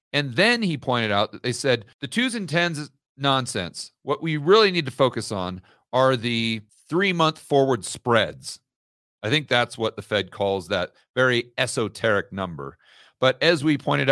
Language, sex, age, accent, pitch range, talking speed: English, male, 40-59, American, 105-135 Hz, 175 wpm